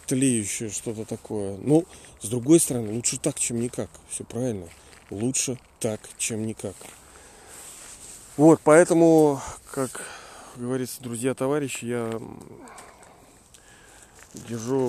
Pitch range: 115-150 Hz